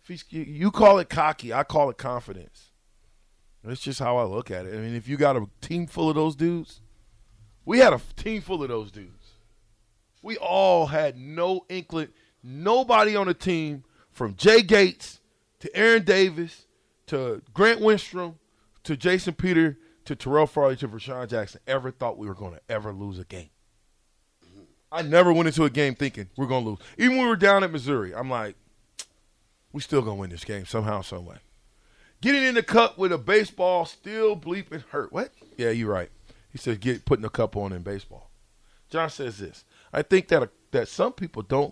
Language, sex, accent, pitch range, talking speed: English, male, American, 110-165 Hz, 195 wpm